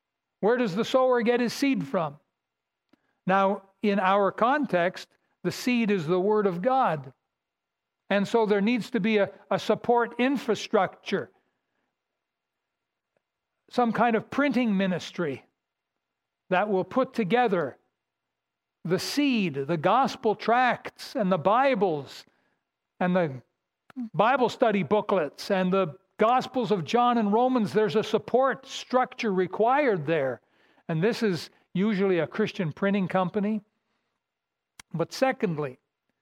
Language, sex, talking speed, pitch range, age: English, male, 125 wpm, 180-225 Hz, 60-79